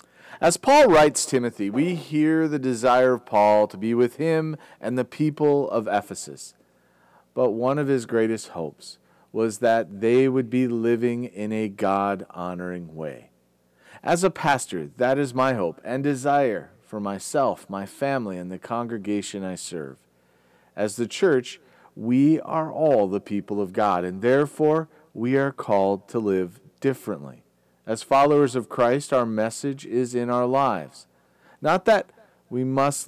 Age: 40-59